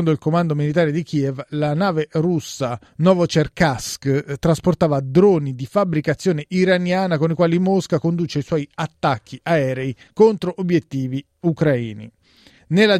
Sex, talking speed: male, 125 wpm